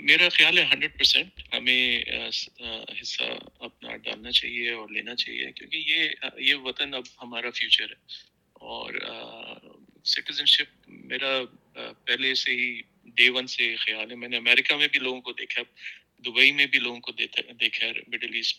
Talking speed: 165 wpm